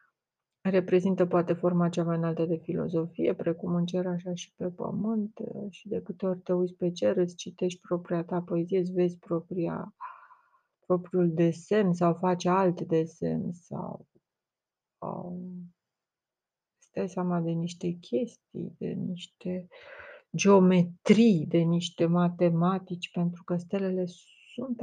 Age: 30-49